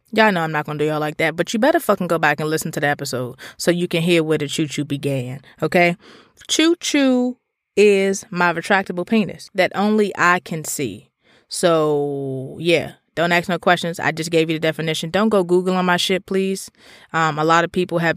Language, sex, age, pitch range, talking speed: English, female, 20-39, 160-200 Hz, 220 wpm